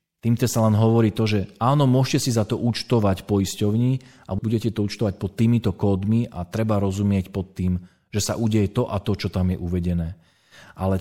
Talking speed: 195 wpm